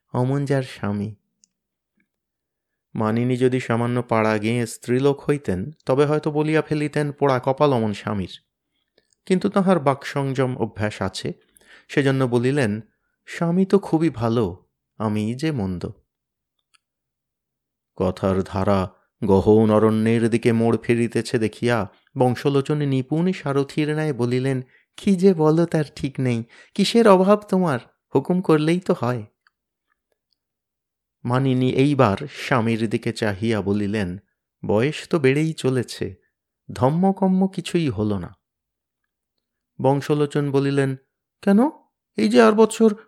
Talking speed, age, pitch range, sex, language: 95 wpm, 30-49, 115-190 Hz, male, Bengali